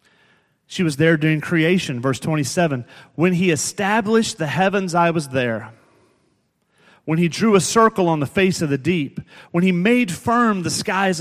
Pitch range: 125-170 Hz